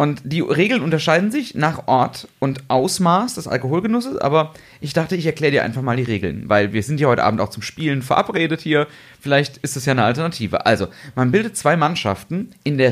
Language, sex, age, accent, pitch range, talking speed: German, male, 30-49, German, 125-165 Hz, 210 wpm